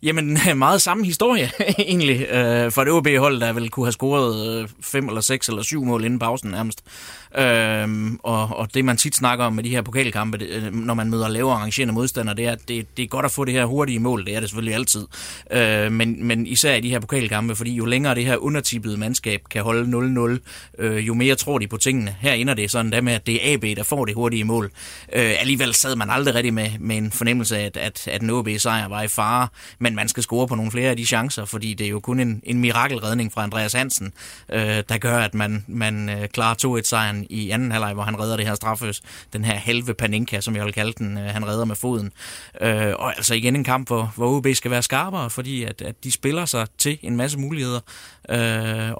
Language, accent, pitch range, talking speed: Danish, native, 110-125 Hz, 240 wpm